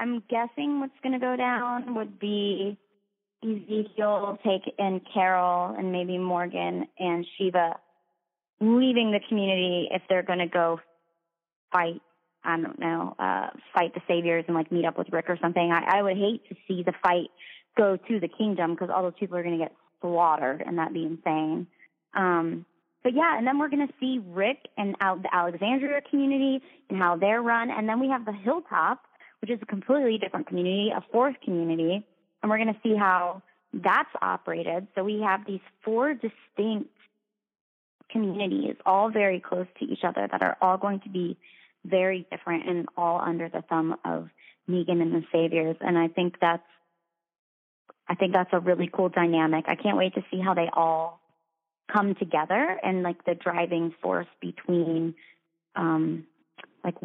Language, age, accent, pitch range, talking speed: English, 20-39, American, 170-210 Hz, 180 wpm